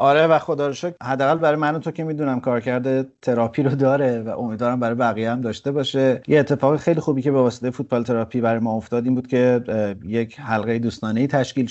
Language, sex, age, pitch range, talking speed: Persian, male, 30-49, 115-130 Hz, 210 wpm